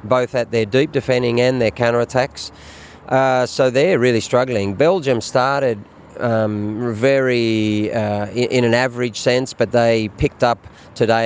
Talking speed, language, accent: 145 wpm, English, Australian